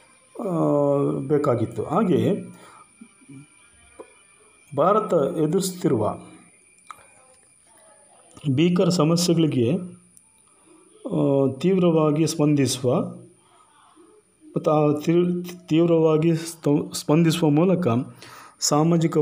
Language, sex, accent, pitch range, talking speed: Kannada, male, native, 130-170 Hz, 45 wpm